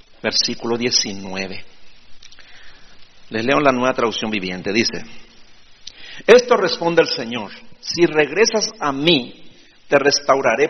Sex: male